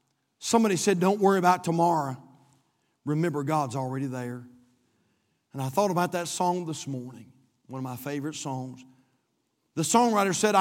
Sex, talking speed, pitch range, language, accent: male, 145 wpm, 135-195 Hz, English, American